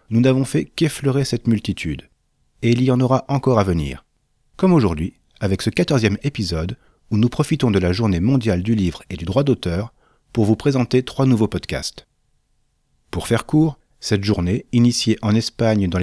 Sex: male